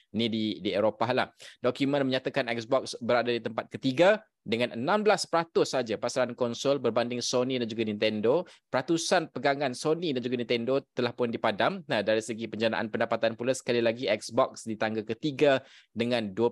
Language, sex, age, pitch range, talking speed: Malay, male, 20-39, 110-130 Hz, 155 wpm